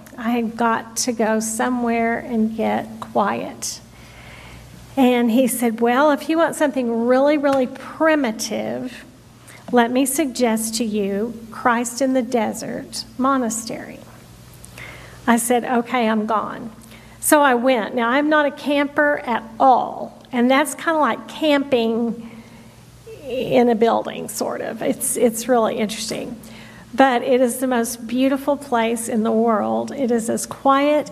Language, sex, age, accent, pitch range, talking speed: English, female, 50-69, American, 225-260 Hz, 145 wpm